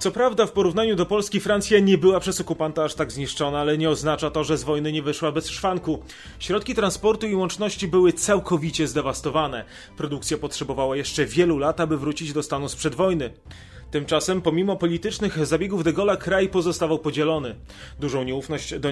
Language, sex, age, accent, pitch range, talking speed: Polish, male, 30-49, native, 150-190 Hz, 175 wpm